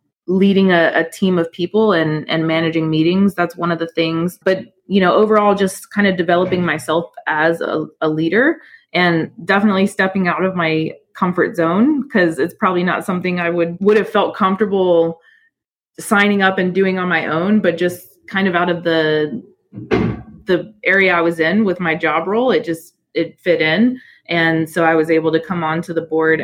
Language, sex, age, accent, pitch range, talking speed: English, female, 20-39, American, 165-195 Hz, 195 wpm